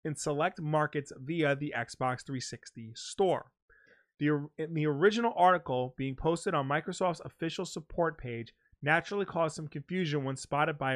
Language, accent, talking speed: English, American, 140 wpm